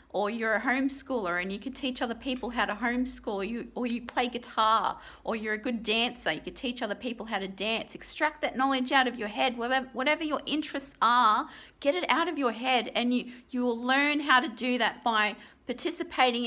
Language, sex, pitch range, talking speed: English, female, 215-255 Hz, 220 wpm